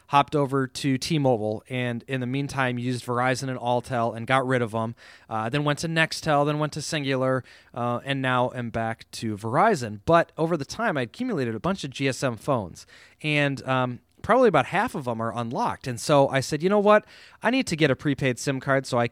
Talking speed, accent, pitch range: 220 wpm, American, 120-155 Hz